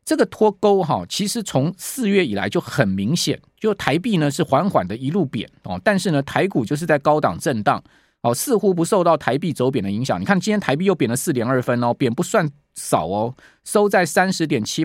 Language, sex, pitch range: Chinese, male, 145-195 Hz